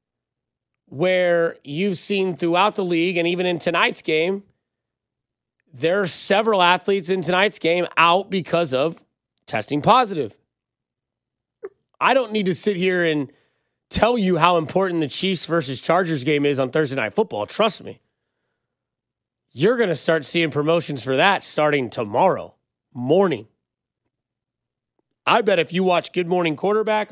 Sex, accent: male, American